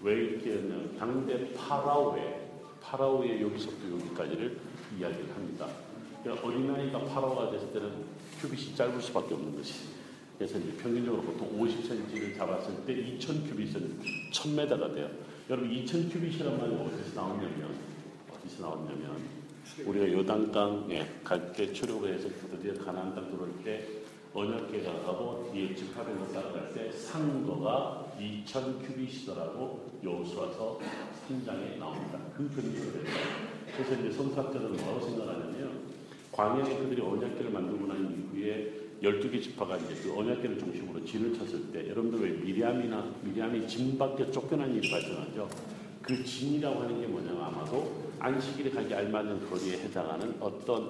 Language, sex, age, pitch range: Korean, male, 40-59, 105-135 Hz